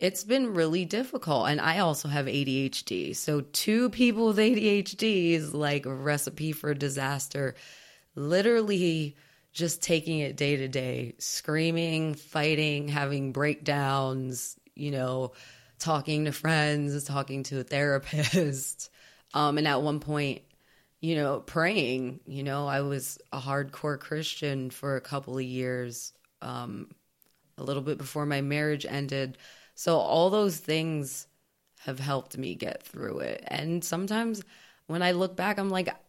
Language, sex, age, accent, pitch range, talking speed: English, female, 20-39, American, 135-160 Hz, 145 wpm